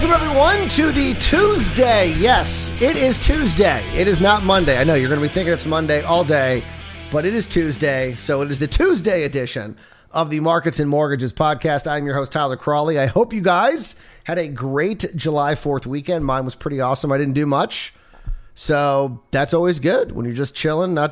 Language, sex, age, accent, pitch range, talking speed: English, male, 30-49, American, 140-190 Hz, 205 wpm